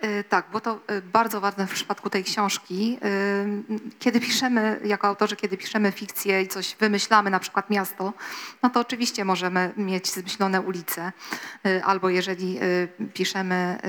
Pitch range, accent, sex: 190-220 Hz, native, female